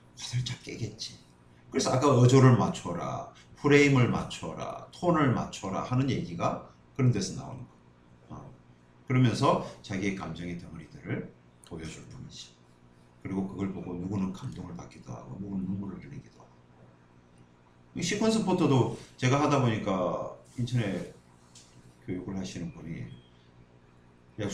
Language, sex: Korean, male